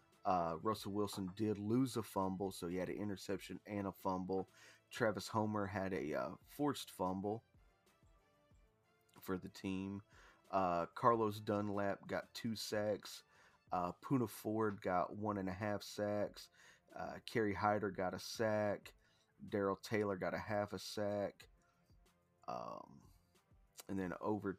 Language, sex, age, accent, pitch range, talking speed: English, male, 40-59, American, 95-105 Hz, 140 wpm